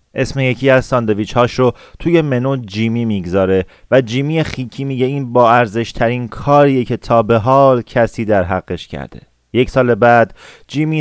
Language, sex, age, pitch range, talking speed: Persian, male, 30-49, 110-130 Hz, 165 wpm